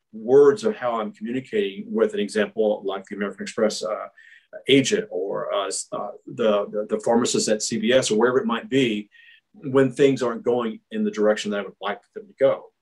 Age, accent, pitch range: 40-59, American, 110-165 Hz